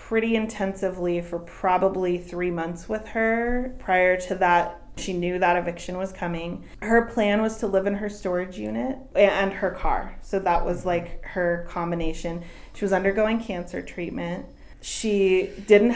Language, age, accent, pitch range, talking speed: English, 30-49, American, 175-220 Hz, 160 wpm